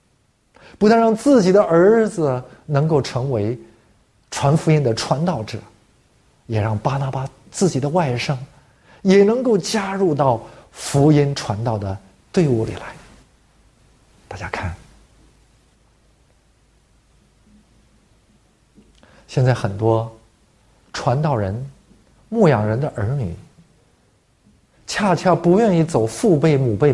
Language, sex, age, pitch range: Chinese, male, 50-69, 110-185 Hz